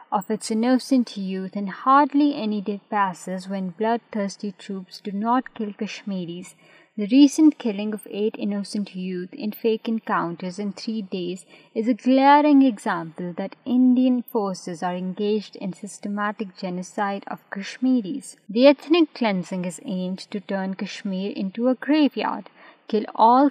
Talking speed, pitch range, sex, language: 145 wpm, 195-255 Hz, female, Urdu